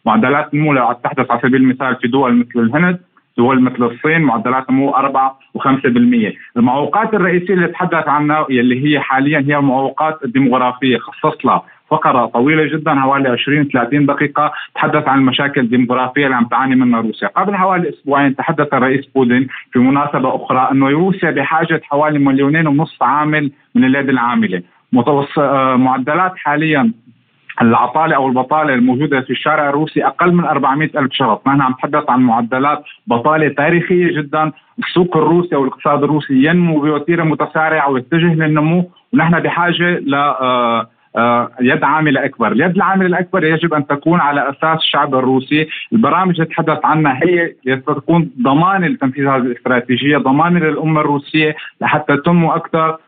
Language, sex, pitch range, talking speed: Arabic, male, 130-160 Hz, 145 wpm